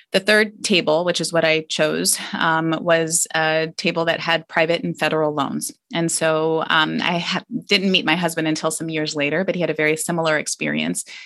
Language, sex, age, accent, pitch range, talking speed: English, female, 20-39, American, 150-170 Hz, 195 wpm